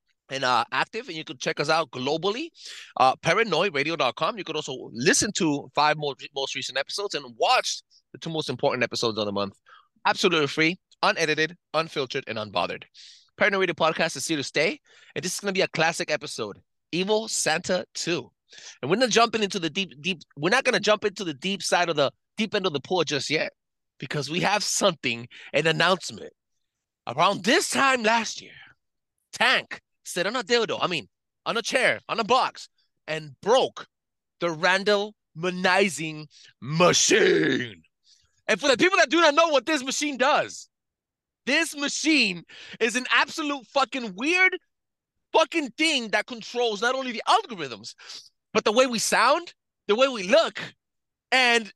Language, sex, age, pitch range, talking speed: English, male, 30-49, 165-265 Hz, 175 wpm